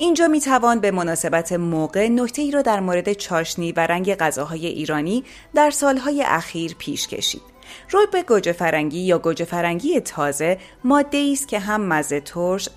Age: 30-49